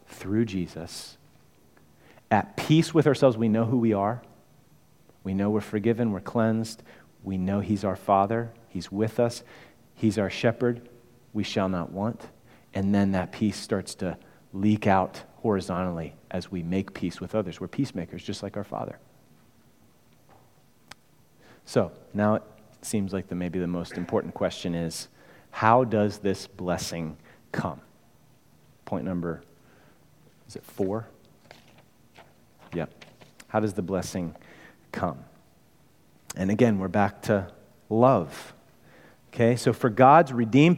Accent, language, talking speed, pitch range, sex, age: American, English, 135 wpm, 95-120 Hz, male, 30-49